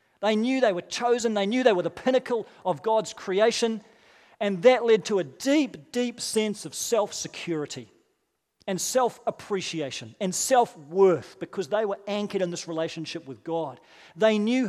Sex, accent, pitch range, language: male, Australian, 160-200 Hz, English